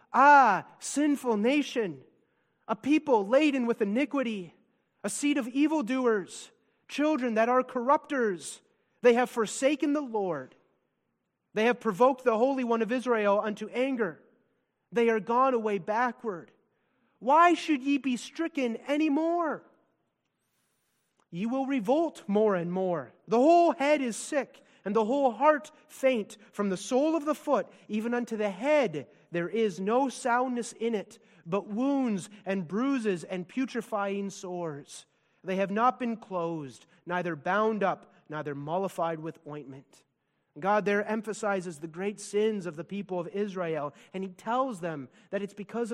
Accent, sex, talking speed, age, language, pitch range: American, male, 145 wpm, 30-49, English, 195-255 Hz